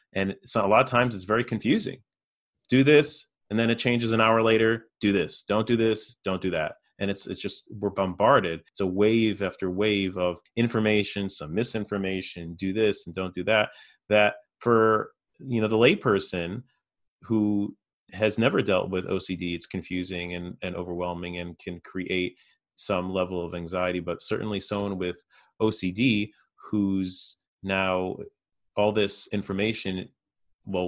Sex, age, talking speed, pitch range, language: male, 30-49, 160 wpm, 90-110 Hz, English